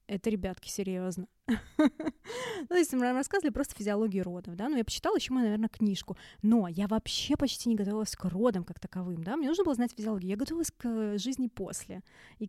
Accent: native